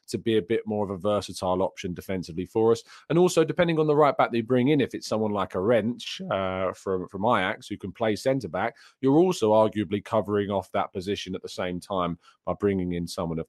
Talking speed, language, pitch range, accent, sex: 235 wpm, English, 95-120 Hz, British, male